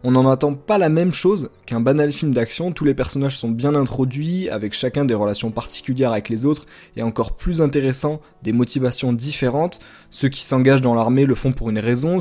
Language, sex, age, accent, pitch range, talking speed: French, male, 20-39, French, 120-155 Hz, 205 wpm